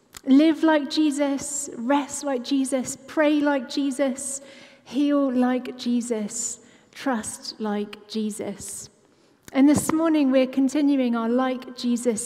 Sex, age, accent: female, 30-49, British